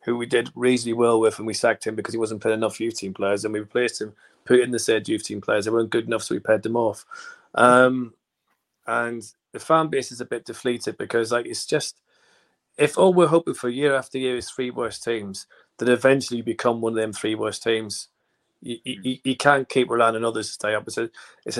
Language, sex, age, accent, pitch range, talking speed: English, male, 30-49, British, 115-135 Hz, 240 wpm